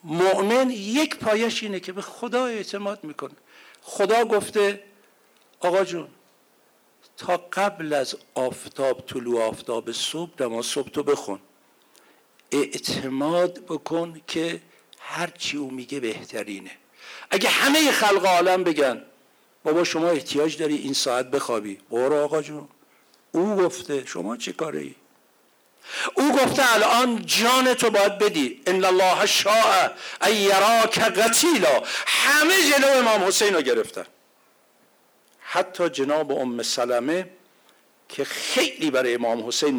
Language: Persian